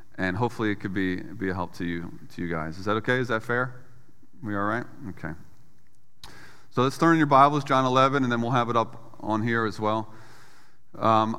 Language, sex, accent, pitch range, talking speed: English, male, American, 105-130 Hz, 215 wpm